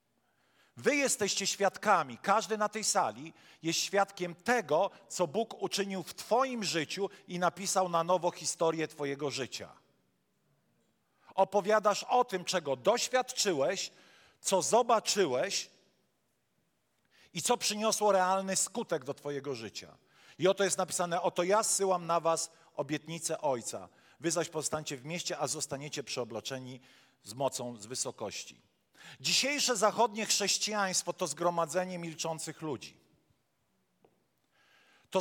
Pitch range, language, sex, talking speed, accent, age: 160-205 Hz, Polish, male, 120 wpm, native, 40-59